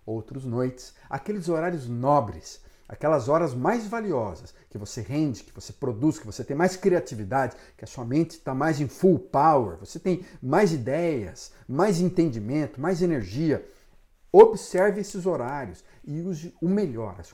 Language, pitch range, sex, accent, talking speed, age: Portuguese, 120-175 Hz, male, Brazilian, 155 wpm, 50-69